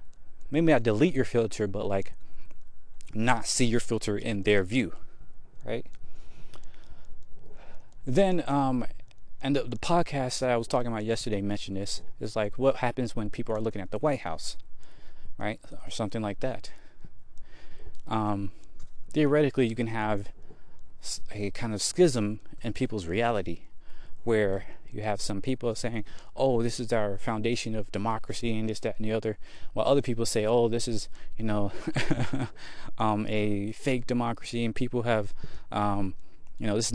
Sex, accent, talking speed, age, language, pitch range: male, American, 160 wpm, 20-39, English, 105-130 Hz